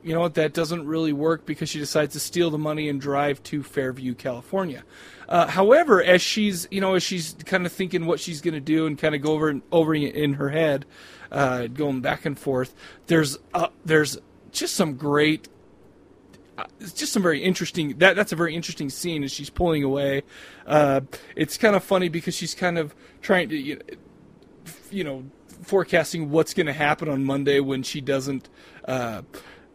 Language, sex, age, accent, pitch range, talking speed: English, male, 30-49, American, 140-170 Hz, 190 wpm